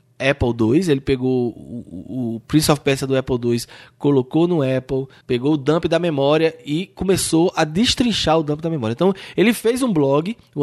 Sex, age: male, 20-39